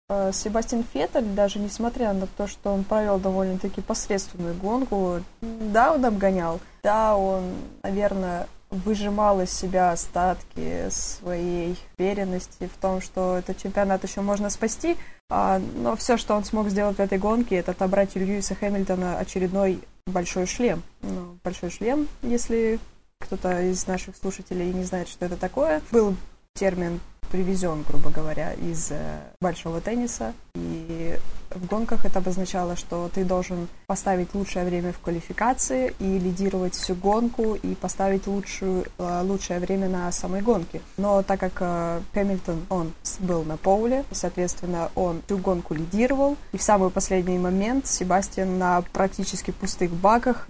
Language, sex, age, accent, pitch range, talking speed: Russian, female, 20-39, native, 180-205 Hz, 140 wpm